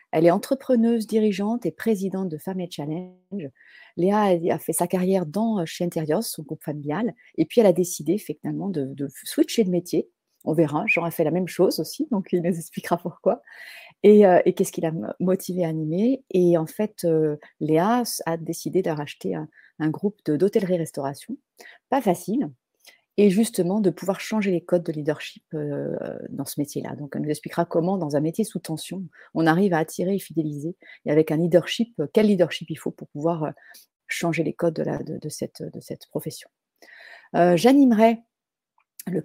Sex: female